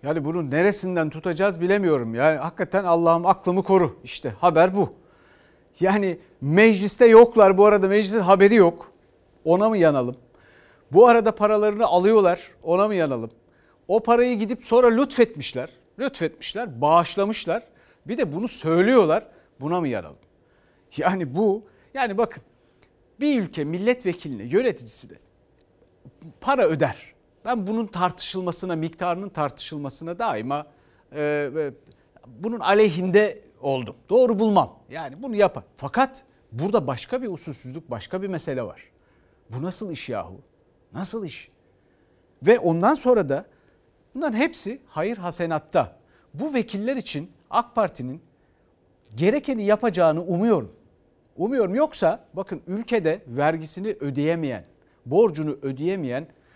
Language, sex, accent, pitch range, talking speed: Turkish, male, native, 150-215 Hz, 120 wpm